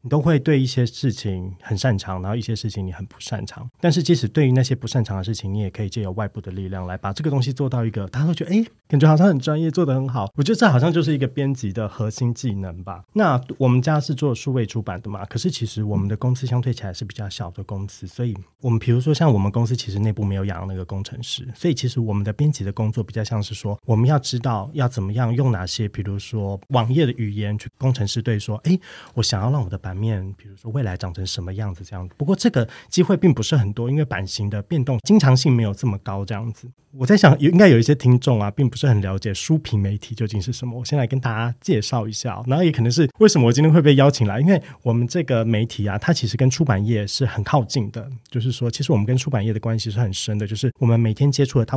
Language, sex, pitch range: Chinese, male, 105-135 Hz